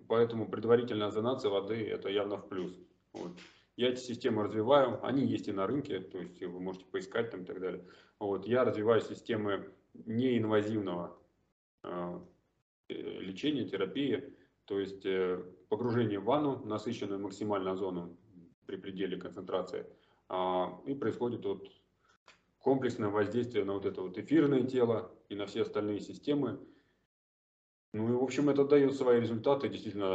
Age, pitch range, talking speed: 20-39, 95-130 Hz, 145 wpm